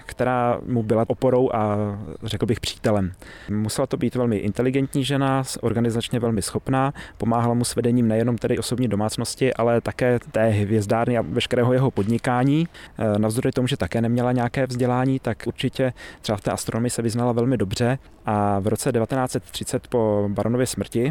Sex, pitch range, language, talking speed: male, 105-130 Hz, Czech, 160 wpm